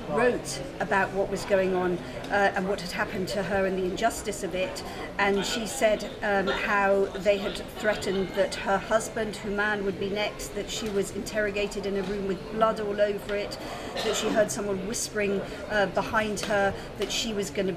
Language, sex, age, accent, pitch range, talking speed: English, female, 50-69, British, 195-220 Hz, 195 wpm